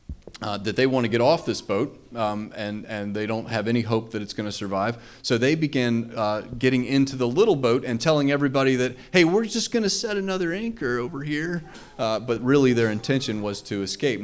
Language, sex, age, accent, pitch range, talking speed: English, male, 40-59, American, 120-155 Hz, 225 wpm